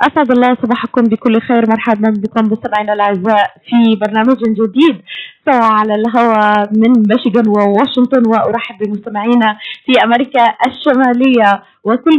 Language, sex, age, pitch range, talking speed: Arabic, female, 20-39, 215-260 Hz, 120 wpm